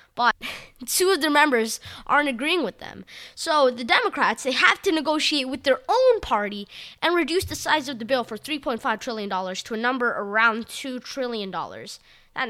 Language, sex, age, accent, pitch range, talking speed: English, female, 20-39, American, 205-270 Hz, 180 wpm